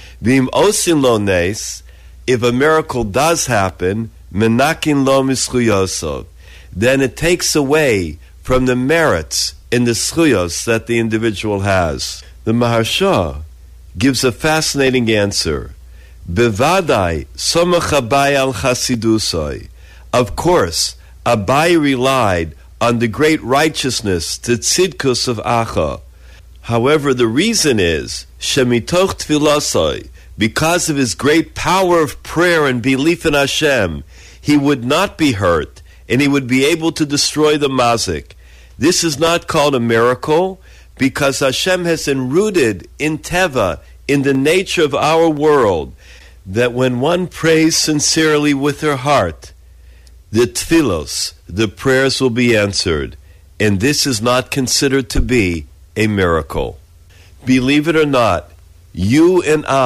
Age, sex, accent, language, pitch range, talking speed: 50-69, male, American, English, 90-145 Hz, 115 wpm